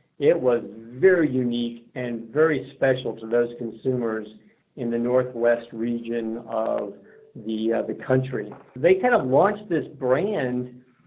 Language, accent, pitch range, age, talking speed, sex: English, American, 120-140 Hz, 50-69, 135 wpm, male